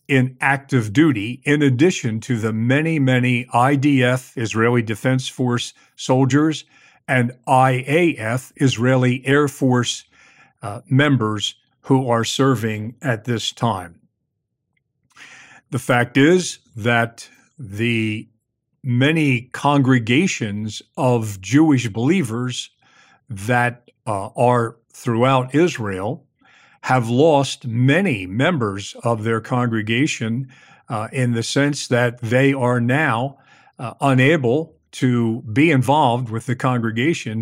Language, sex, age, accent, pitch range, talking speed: English, male, 50-69, American, 120-140 Hz, 105 wpm